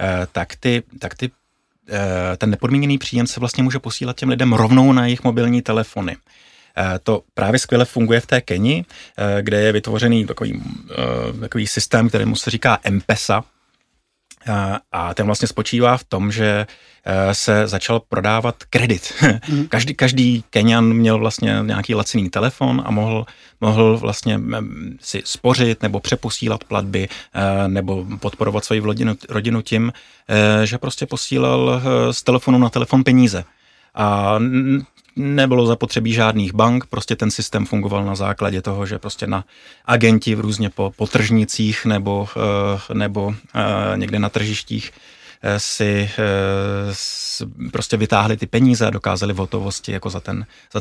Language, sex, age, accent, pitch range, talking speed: Czech, male, 30-49, native, 105-120 Hz, 135 wpm